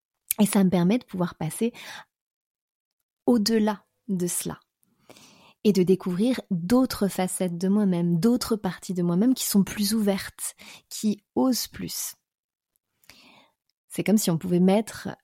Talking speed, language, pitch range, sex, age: 135 wpm, French, 175-220 Hz, female, 30-49